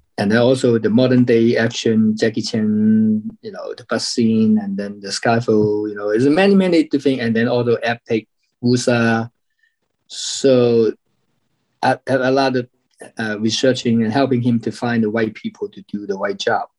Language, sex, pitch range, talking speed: English, male, 105-120 Hz, 185 wpm